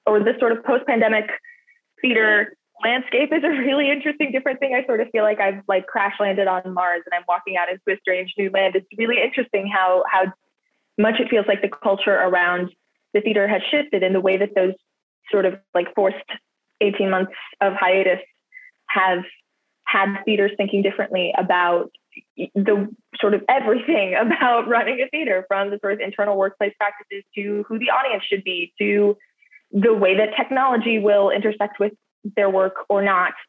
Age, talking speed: 20-39, 180 wpm